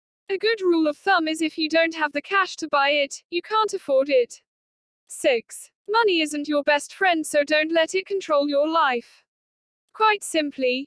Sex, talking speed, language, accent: female, 190 wpm, Hindi, British